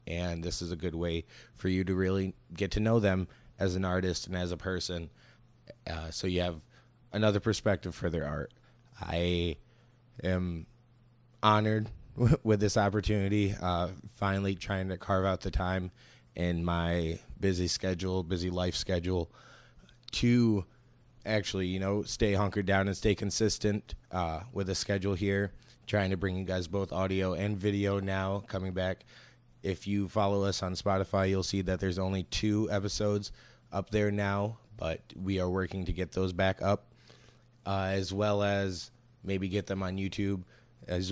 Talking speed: 165 wpm